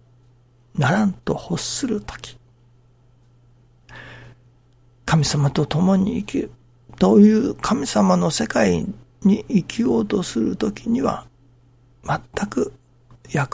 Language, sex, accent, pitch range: Japanese, male, native, 120-155 Hz